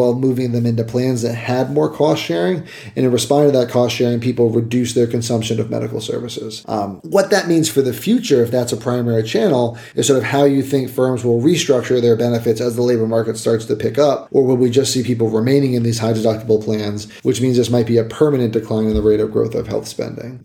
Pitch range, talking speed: 120-145 Hz, 235 wpm